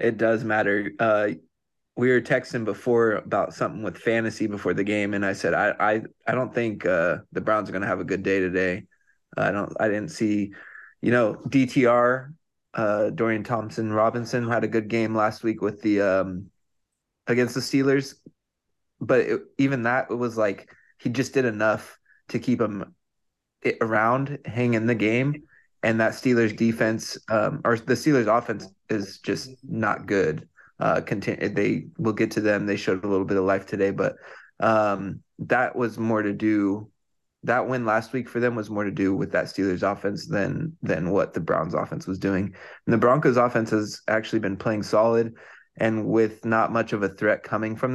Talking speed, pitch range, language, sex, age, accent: 190 wpm, 100-120 Hz, English, male, 20-39, American